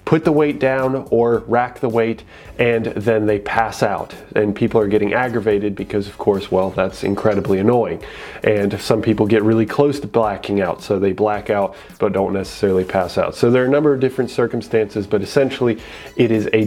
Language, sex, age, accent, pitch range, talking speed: English, male, 30-49, American, 105-125 Hz, 200 wpm